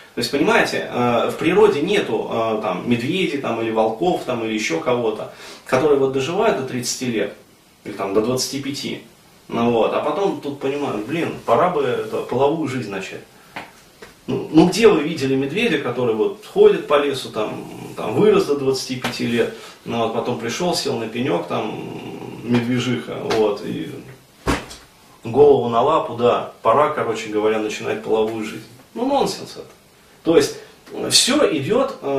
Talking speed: 155 wpm